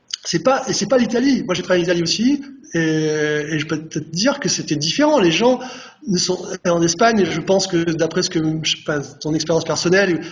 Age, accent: 30-49, French